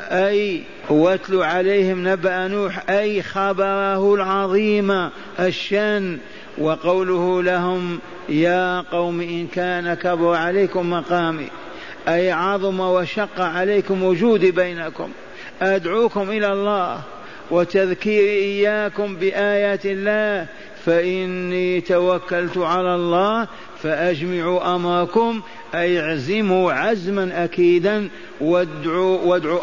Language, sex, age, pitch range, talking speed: Arabic, male, 50-69, 170-195 Hz, 85 wpm